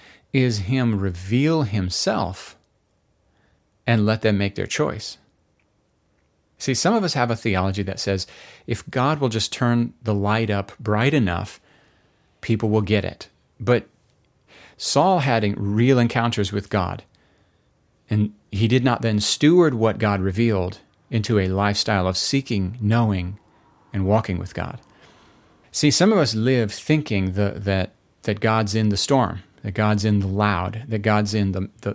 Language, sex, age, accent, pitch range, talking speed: English, male, 40-59, American, 100-120 Hz, 155 wpm